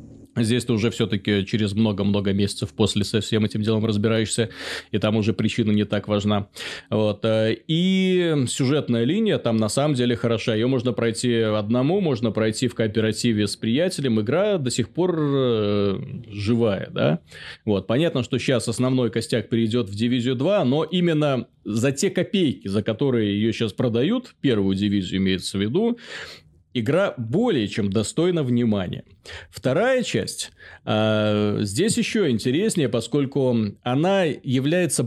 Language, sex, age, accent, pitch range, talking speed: Russian, male, 30-49, native, 110-140 Hz, 140 wpm